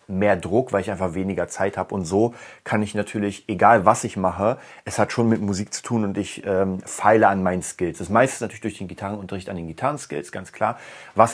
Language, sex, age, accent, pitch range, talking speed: German, male, 30-49, German, 95-115 Hz, 235 wpm